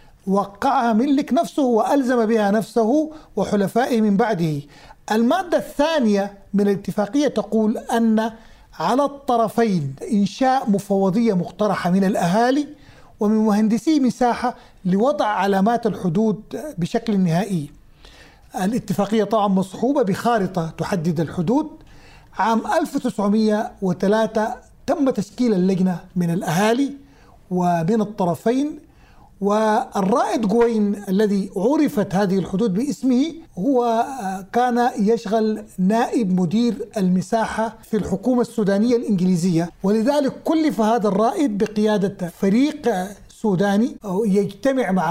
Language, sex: Arabic, male